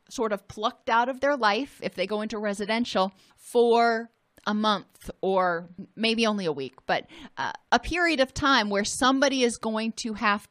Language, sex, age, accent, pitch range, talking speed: English, female, 30-49, American, 200-245 Hz, 185 wpm